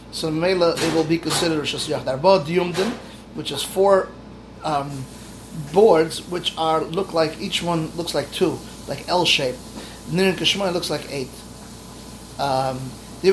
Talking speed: 145 wpm